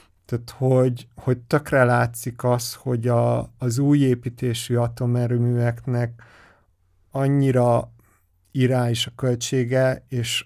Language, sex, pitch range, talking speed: Hungarian, male, 115-140 Hz, 105 wpm